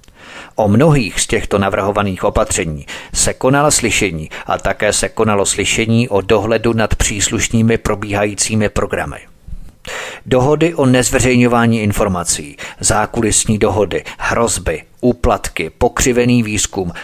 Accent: native